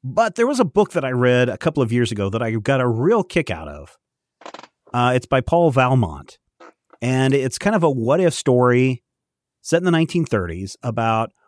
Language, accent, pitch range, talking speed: English, American, 110-145 Hz, 200 wpm